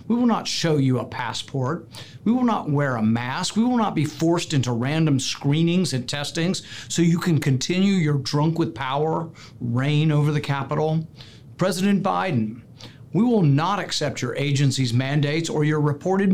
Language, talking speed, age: English, 175 wpm, 50-69